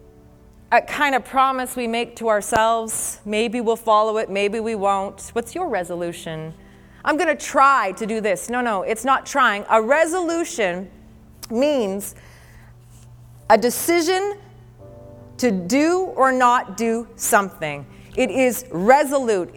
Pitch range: 215-340 Hz